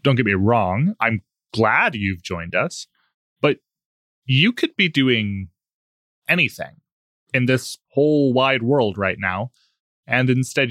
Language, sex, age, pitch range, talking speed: English, male, 20-39, 105-135 Hz, 135 wpm